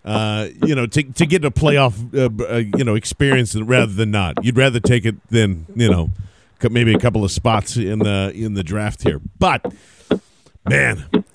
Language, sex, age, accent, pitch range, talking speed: English, male, 40-59, American, 115-140 Hz, 190 wpm